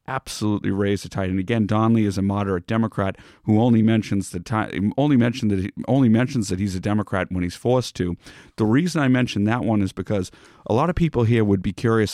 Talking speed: 225 wpm